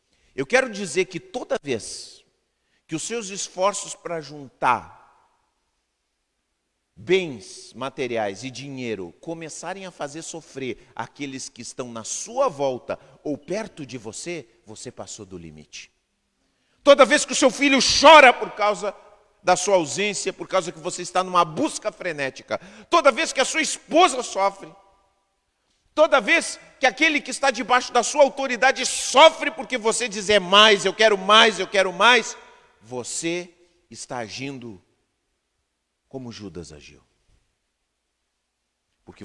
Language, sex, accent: Portuguese, male, Brazilian